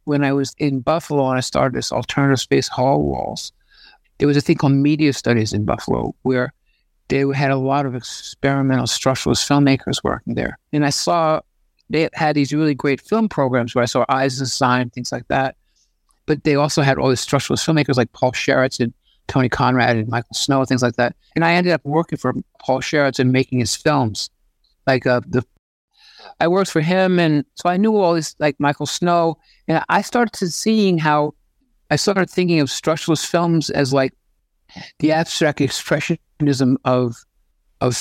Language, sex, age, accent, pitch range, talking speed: English, male, 50-69, American, 130-155 Hz, 190 wpm